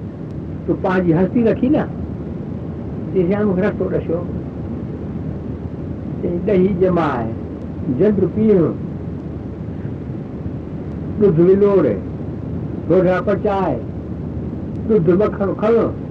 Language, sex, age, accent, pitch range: Hindi, male, 60-79, native, 160-210 Hz